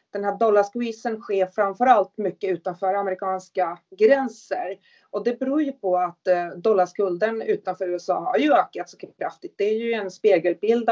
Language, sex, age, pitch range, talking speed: Swedish, female, 30-49, 185-225 Hz, 155 wpm